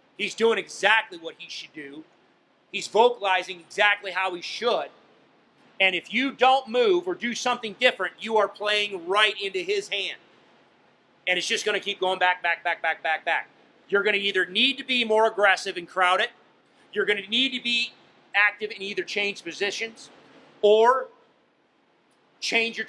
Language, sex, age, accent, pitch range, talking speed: English, male, 30-49, American, 190-230 Hz, 175 wpm